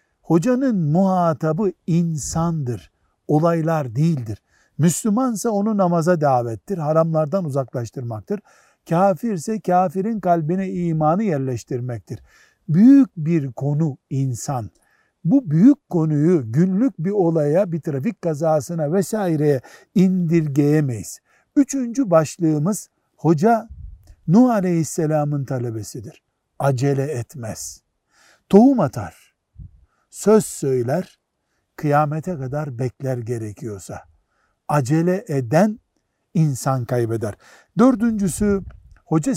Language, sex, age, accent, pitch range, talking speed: Turkish, male, 60-79, native, 135-190 Hz, 80 wpm